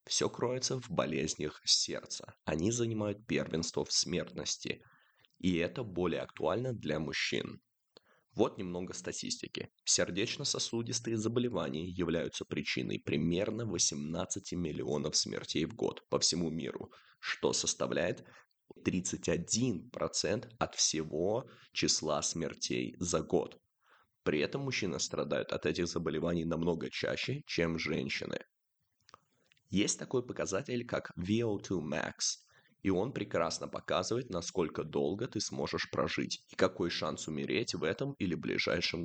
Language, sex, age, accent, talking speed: Russian, male, 20-39, native, 115 wpm